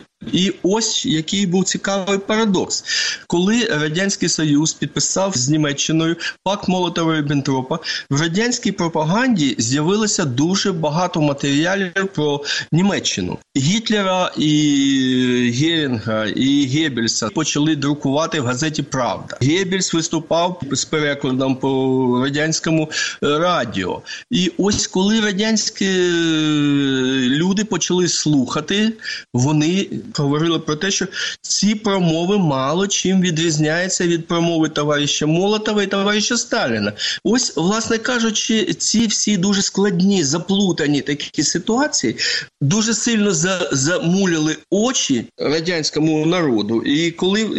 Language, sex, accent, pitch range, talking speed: Ukrainian, male, native, 145-195 Hz, 105 wpm